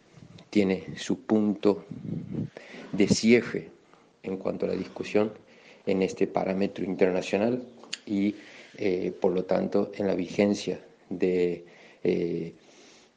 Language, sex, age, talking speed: Spanish, male, 40-59, 110 wpm